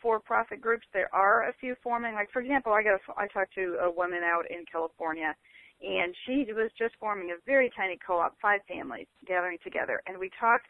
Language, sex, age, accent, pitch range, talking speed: English, female, 40-59, American, 175-230 Hz, 200 wpm